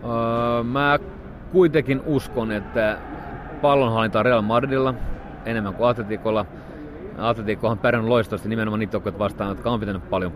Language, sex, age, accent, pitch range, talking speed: Finnish, male, 30-49, native, 95-115 Hz, 135 wpm